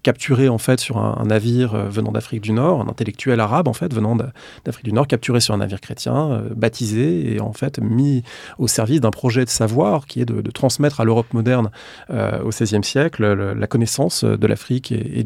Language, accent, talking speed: English, French, 215 wpm